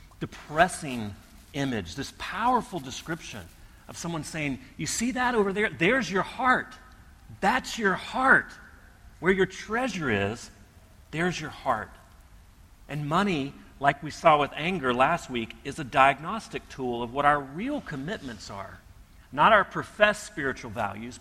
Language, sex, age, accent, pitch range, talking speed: English, male, 40-59, American, 100-150 Hz, 140 wpm